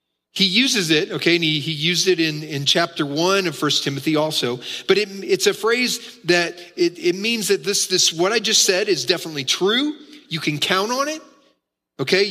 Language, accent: English, American